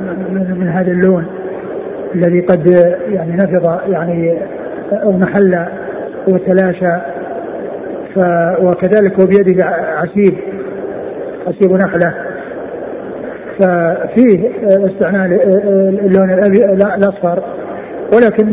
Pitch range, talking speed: 180-195 Hz, 70 wpm